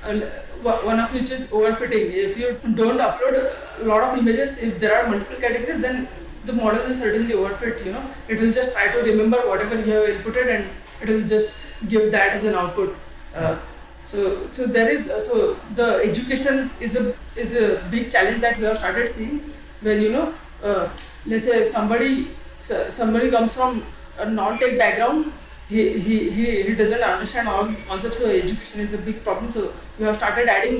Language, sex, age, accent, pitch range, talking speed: English, female, 20-39, Indian, 215-240 Hz, 185 wpm